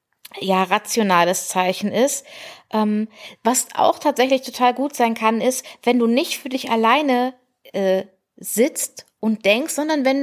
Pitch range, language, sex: 200-255 Hz, German, female